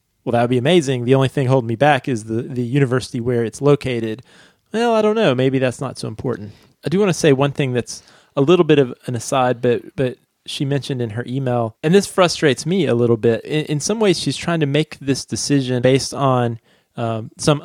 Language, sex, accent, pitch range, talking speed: English, male, American, 125-145 Hz, 230 wpm